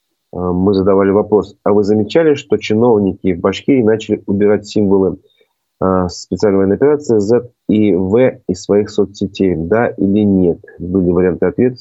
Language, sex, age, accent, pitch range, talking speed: Russian, male, 30-49, native, 90-105 Hz, 135 wpm